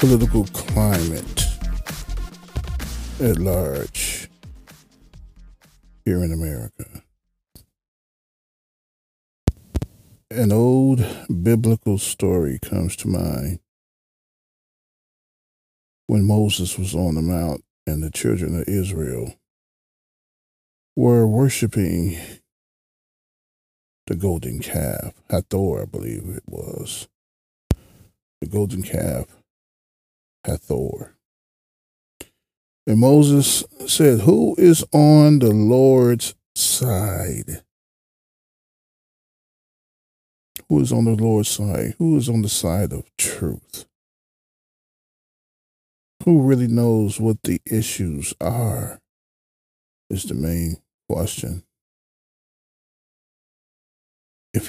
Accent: American